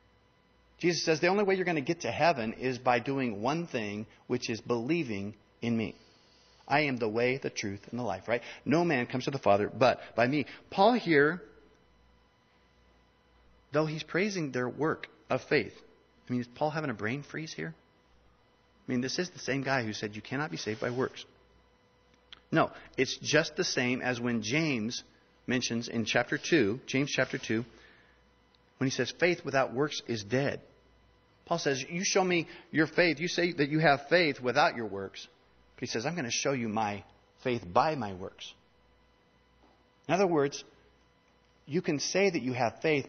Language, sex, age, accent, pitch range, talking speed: English, male, 40-59, American, 110-155 Hz, 190 wpm